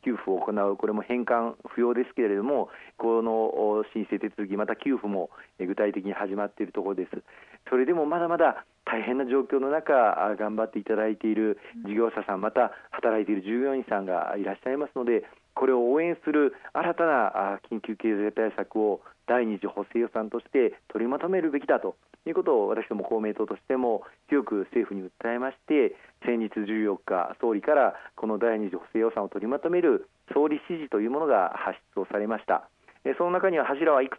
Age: 40-59